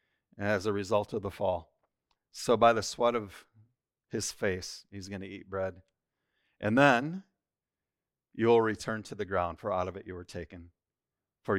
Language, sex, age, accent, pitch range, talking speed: English, male, 40-59, American, 95-115 Hz, 175 wpm